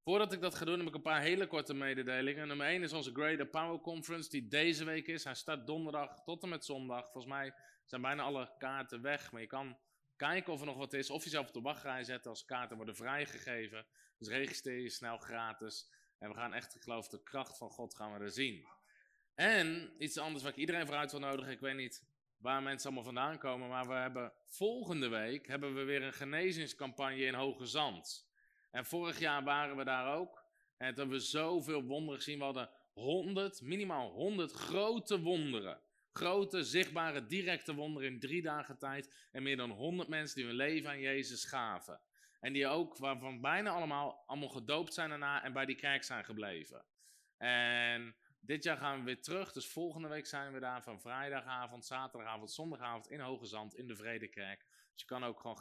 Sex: male